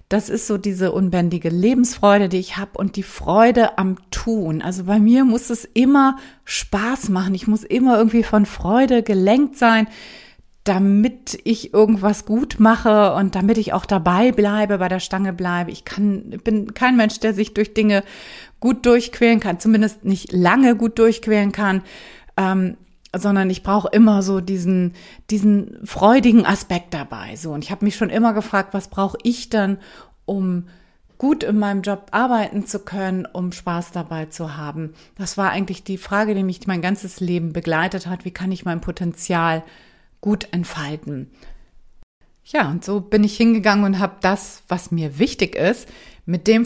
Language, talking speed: German, 170 wpm